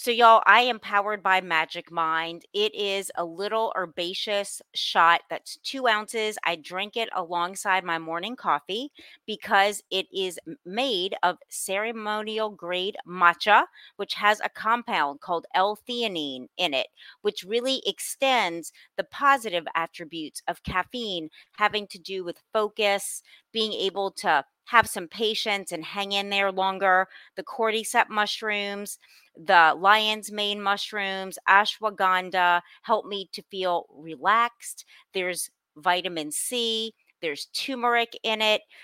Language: English